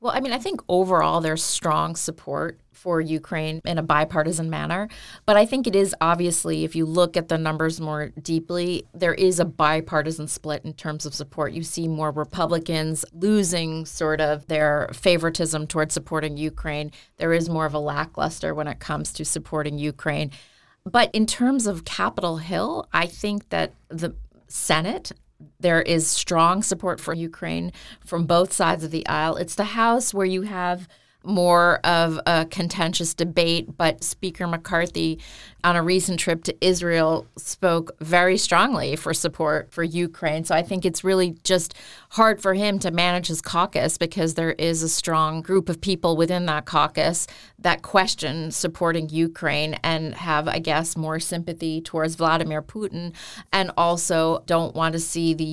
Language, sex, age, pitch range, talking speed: English, female, 30-49, 155-180 Hz, 170 wpm